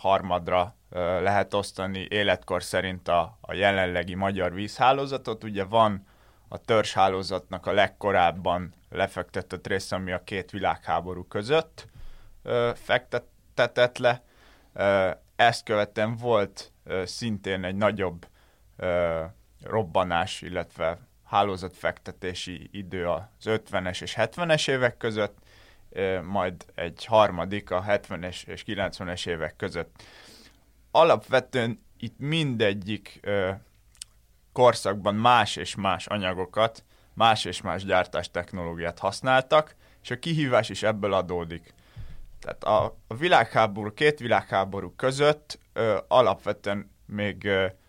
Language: Hungarian